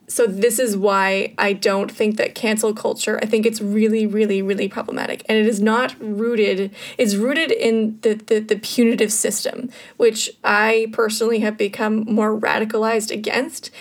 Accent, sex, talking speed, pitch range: American, female, 165 wpm, 215-235 Hz